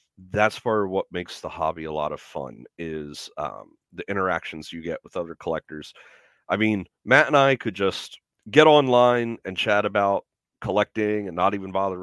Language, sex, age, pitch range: English, male, 40-59, 95-140 Hz